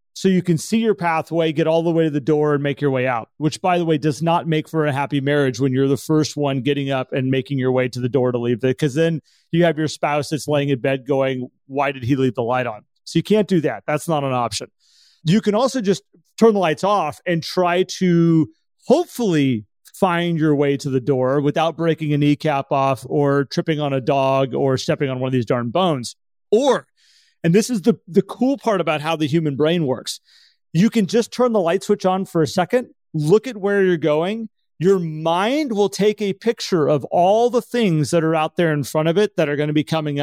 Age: 30-49